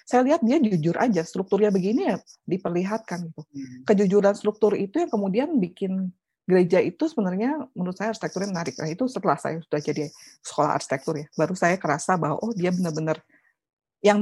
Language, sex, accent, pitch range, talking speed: Indonesian, female, native, 175-230 Hz, 165 wpm